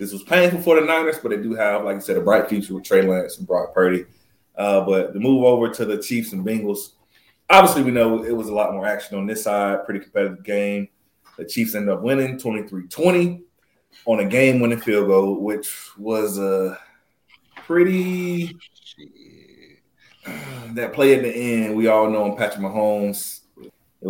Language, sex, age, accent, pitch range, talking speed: English, male, 30-49, American, 100-130 Hz, 185 wpm